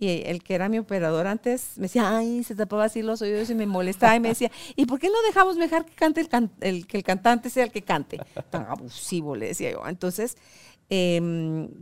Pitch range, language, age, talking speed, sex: 190-255 Hz, Spanish, 50-69, 235 wpm, female